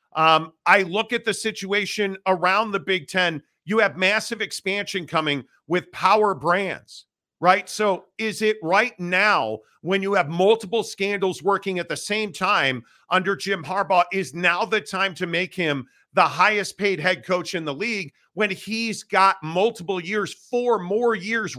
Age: 40-59